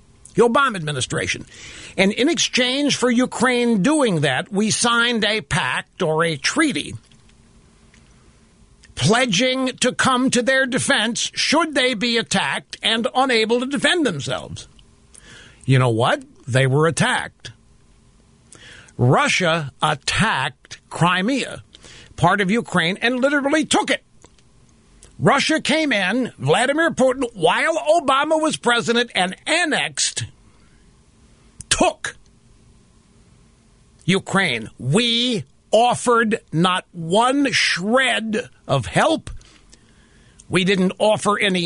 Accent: American